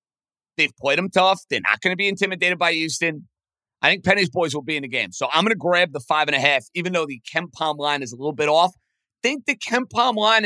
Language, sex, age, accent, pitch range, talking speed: English, male, 30-49, American, 140-185 Hz, 265 wpm